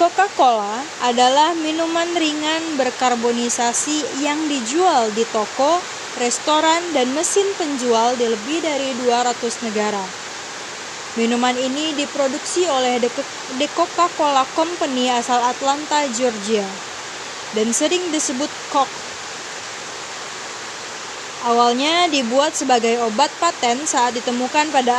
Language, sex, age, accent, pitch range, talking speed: Indonesian, female, 20-39, native, 245-315 Hz, 95 wpm